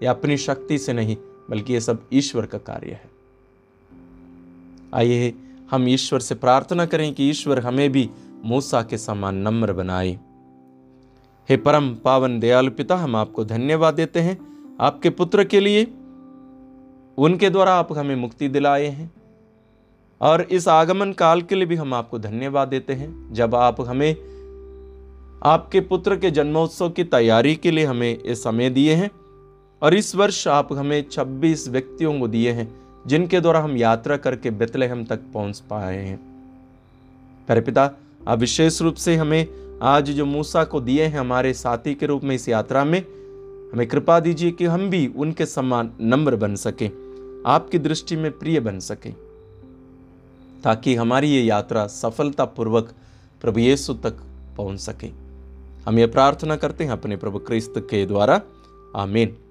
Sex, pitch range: male, 115-155 Hz